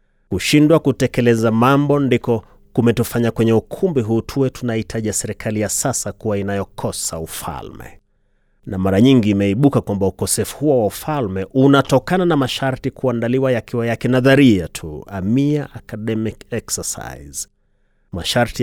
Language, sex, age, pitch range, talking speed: Swahili, male, 30-49, 105-130 Hz, 120 wpm